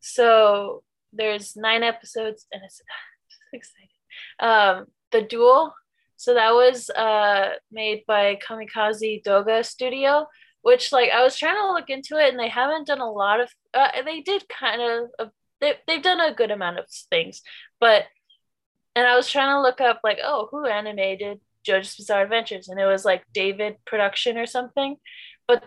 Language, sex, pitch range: English, female, 215-290 Hz